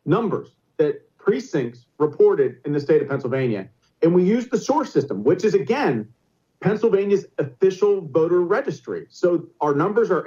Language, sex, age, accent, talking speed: English, male, 40-59, American, 150 wpm